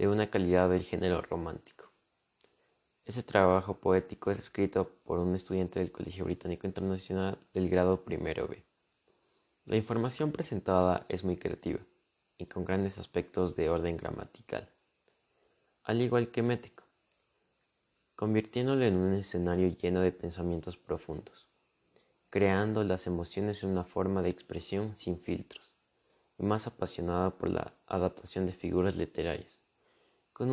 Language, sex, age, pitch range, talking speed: Spanish, male, 20-39, 90-100 Hz, 130 wpm